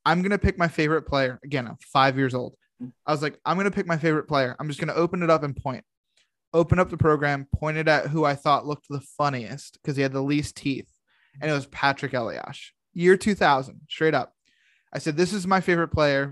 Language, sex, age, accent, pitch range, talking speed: English, male, 20-39, American, 135-160 Hz, 240 wpm